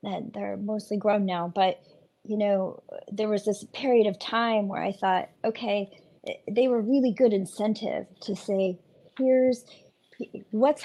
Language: English